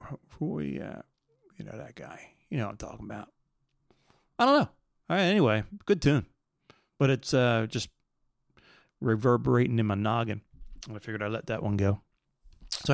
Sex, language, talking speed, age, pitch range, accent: male, English, 155 wpm, 30-49, 110-135 Hz, American